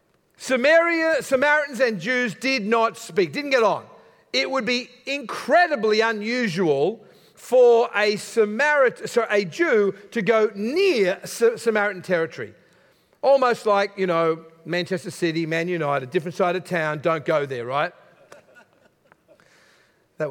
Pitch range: 170-245 Hz